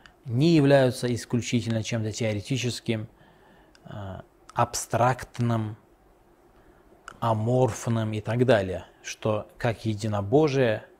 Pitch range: 110-130 Hz